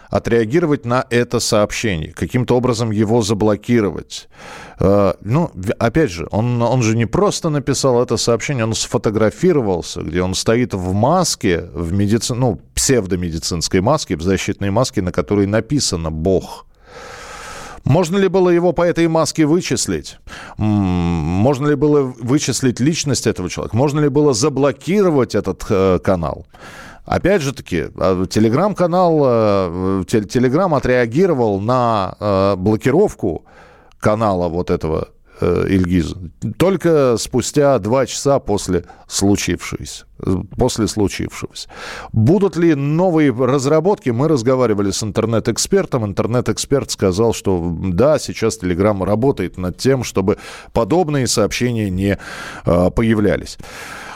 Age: 40-59